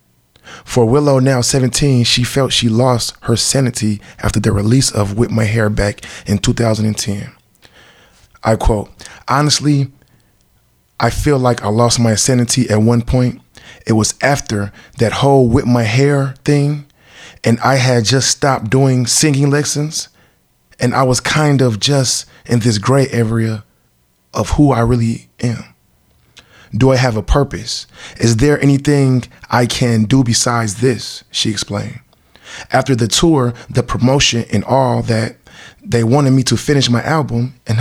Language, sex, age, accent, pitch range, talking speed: English, male, 20-39, American, 110-135 Hz, 150 wpm